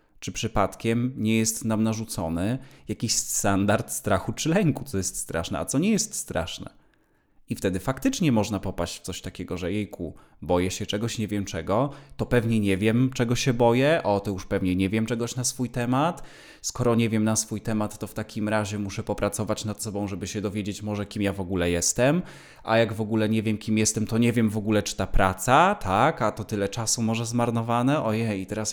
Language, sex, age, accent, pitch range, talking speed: Polish, male, 20-39, native, 95-125 Hz, 210 wpm